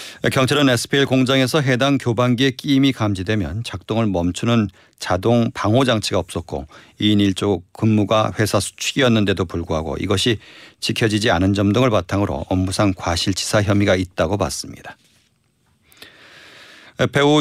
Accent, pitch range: native, 100-125 Hz